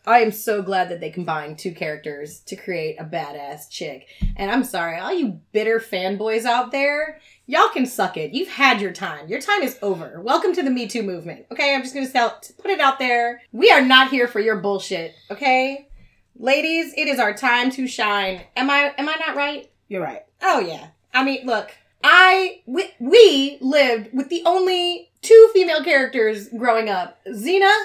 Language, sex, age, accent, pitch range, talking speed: English, female, 20-39, American, 190-315 Hz, 195 wpm